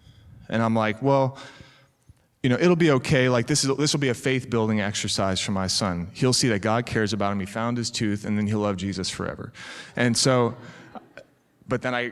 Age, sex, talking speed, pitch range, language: 30-49, male, 220 wpm, 105-135 Hz, English